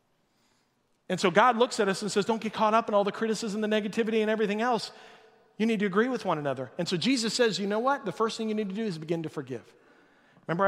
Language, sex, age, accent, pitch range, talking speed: English, male, 40-59, American, 170-225 Hz, 265 wpm